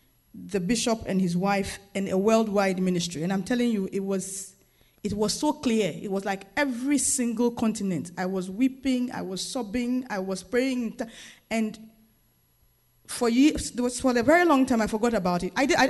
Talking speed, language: 190 wpm, English